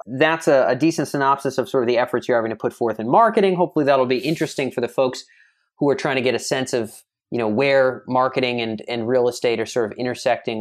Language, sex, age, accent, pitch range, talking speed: English, male, 30-49, American, 130-175 Hz, 250 wpm